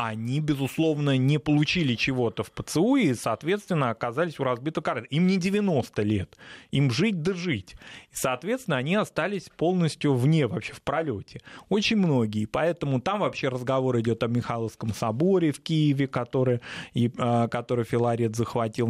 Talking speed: 150 wpm